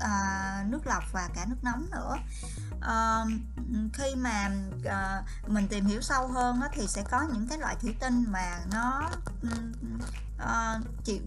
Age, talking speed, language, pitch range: 20-39, 135 wpm, Vietnamese, 180-240 Hz